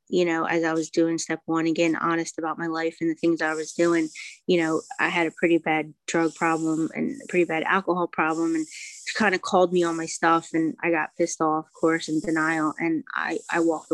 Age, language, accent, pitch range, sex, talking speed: 20-39, English, American, 165-190 Hz, female, 240 wpm